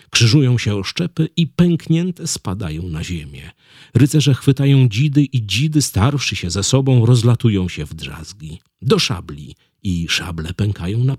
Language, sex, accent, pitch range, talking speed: Polish, male, native, 90-135 Hz, 150 wpm